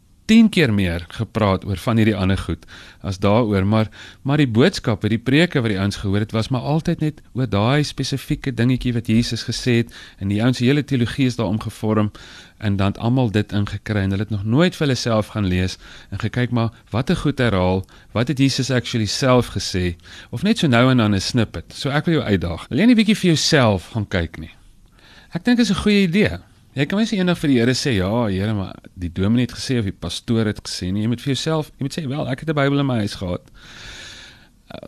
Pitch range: 100-135 Hz